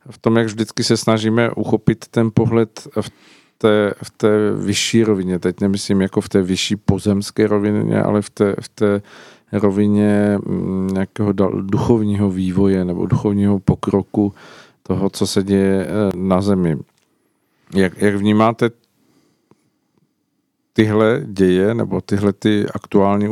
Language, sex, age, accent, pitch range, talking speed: Czech, male, 50-69, native, 95-110 Hz, 120 wpm